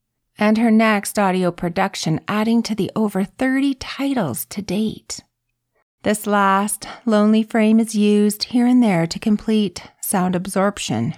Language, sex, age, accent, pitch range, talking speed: English, female, 40-59, American, 145-220 Hz, 140 wpm